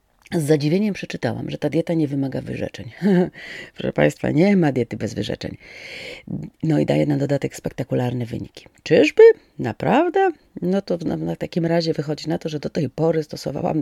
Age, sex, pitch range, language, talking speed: 40-59, female, 130-190 Hz, Polish, 165 wpm